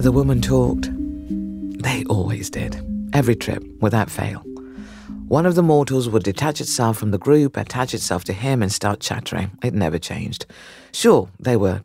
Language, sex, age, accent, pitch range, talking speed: English, female, 50-69, British, 100-135 Hz, 165 wpm